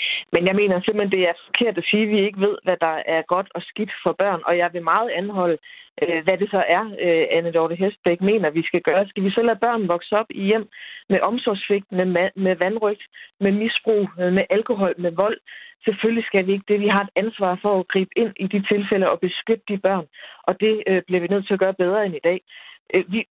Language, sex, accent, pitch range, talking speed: Danish, female, native, 180-215 Hz, 225 wpm